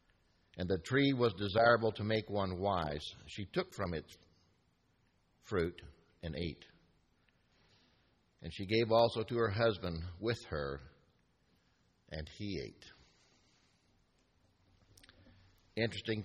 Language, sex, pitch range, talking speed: English, male, 85-110 Hz, 105 wpm